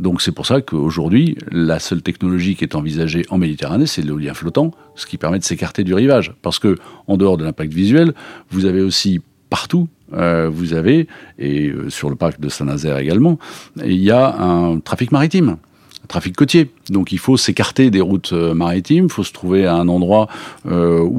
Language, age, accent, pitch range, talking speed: French, 50-69, French, 80-110 Hz, 195 wpm